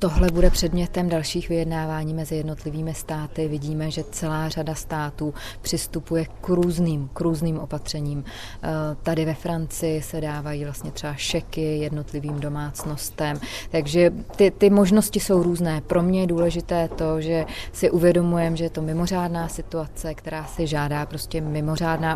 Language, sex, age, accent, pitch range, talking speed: Czech, female, 30-49, native, 150-165 Hz, 145 wpm